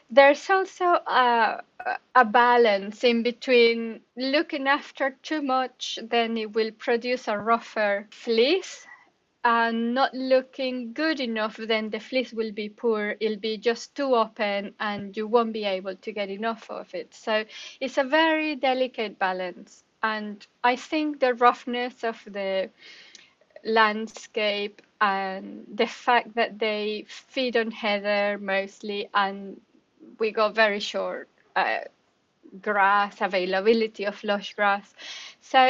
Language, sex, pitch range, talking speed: English, female, 215-265 Hz, 135 wpm